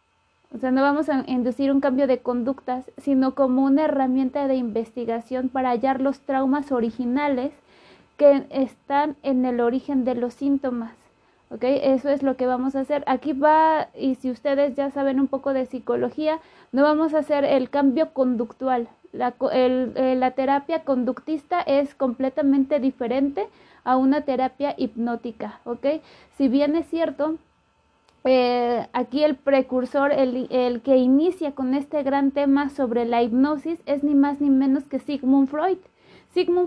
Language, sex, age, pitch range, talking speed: Spanish, female, 30-49, 260-300 Hz, 155 wpm